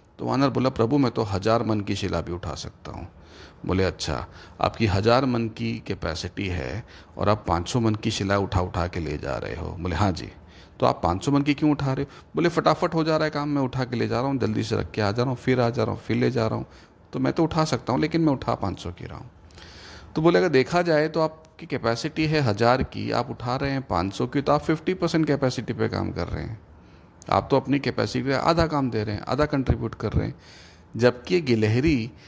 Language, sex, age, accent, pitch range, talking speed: Hindi, male, 40-59, native, 100-140 Hz, 255 wpm